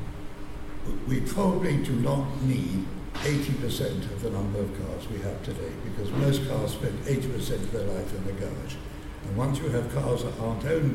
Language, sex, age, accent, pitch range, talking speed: English, male, 60-79, British, 100-140 Hz, 180 wpm